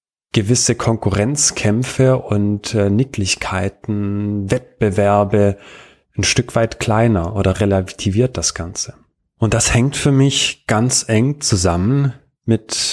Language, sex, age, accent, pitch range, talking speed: German, male, 30-49, German, 95-115 Hz, 105 wpm